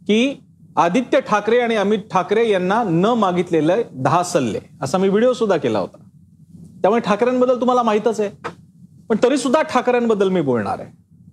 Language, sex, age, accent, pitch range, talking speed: Marathi, male, 40-59, native, 170-220 Hz, 100 wpm